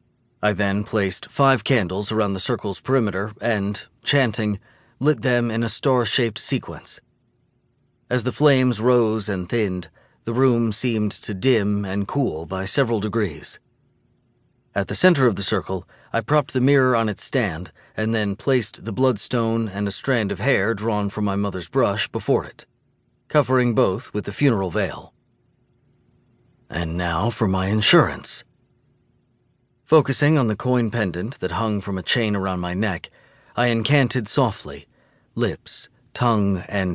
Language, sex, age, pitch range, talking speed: English, male, 40-59, 105-130 Hz, 150 wpm